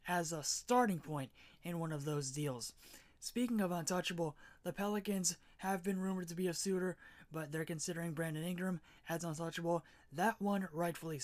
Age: 20-39